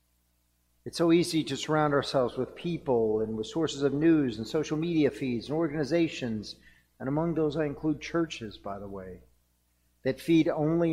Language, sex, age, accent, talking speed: English, male, 50-69, American, 170 wpm